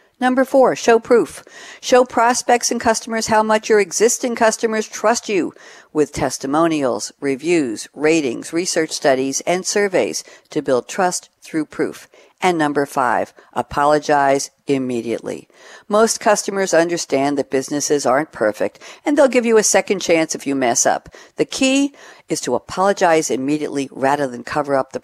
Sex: female